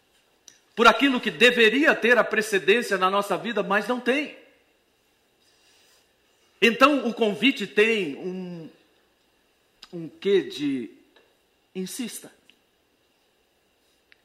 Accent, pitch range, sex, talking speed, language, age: Brazilian, 160-235 Hz, male, 95 wpm, Portuguese, 50-69